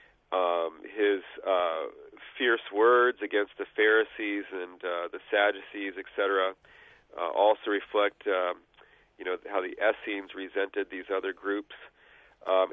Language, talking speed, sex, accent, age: English, 125 wpm, male, American, 40-59